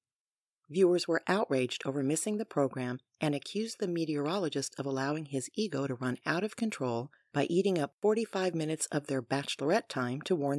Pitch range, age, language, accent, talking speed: 130-175 Hz, 40-59, English, American, 175 wpm